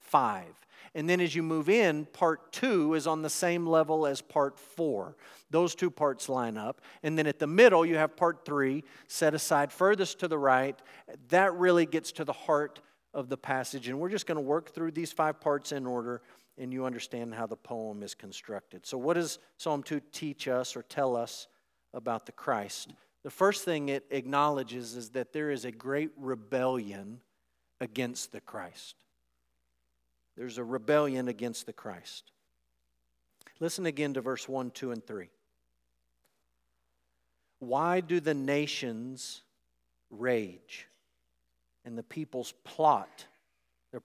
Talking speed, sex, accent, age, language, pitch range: 160 wpm, male, American, 50-69, English, 120-160 Hz